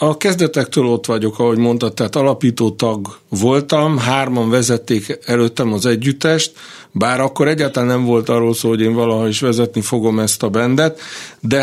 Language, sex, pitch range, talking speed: Hungarian, male, 115-140 Hz, 165 wpm